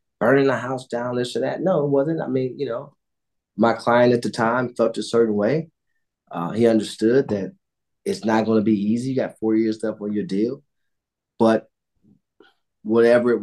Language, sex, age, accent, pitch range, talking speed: English, male, 30-49, American, 105-115 Hz, 195 wpm